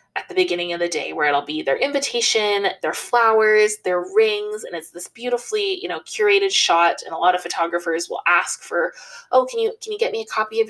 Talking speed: 230 wpm